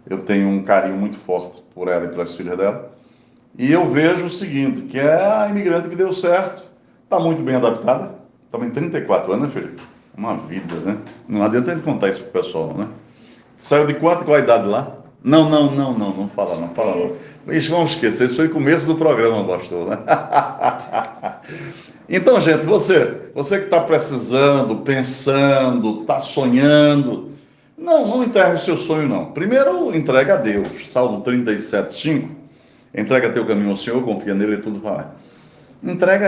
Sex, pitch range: male, 115-165 Hz